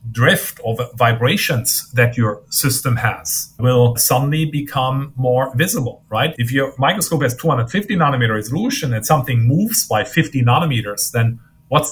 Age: 50-69